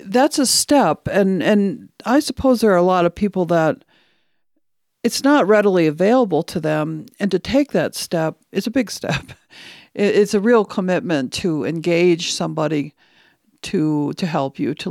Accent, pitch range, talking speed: American, 160-215 Hz, 165 wpm